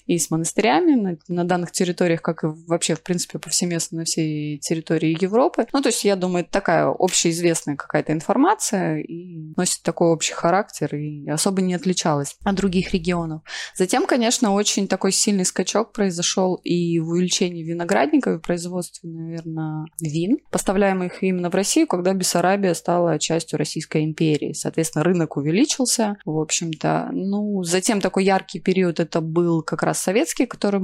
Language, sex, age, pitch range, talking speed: Russian, female, 20-39, 160-195 Hz, 155 wpm